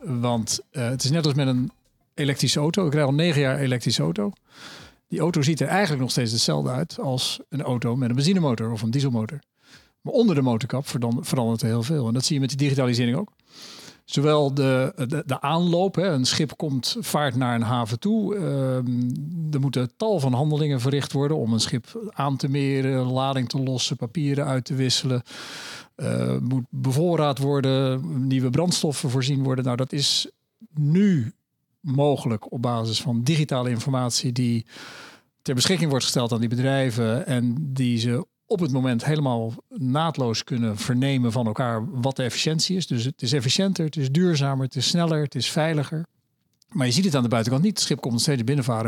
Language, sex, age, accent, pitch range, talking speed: Dutch, male, 50-69, Dutch, 125-150 Hz, 185 wpm